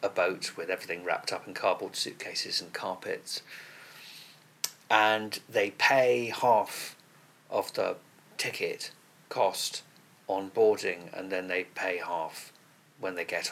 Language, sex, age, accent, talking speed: English, male, 40-59, British, 130 wpm